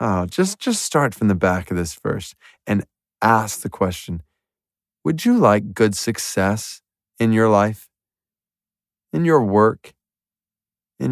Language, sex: English, male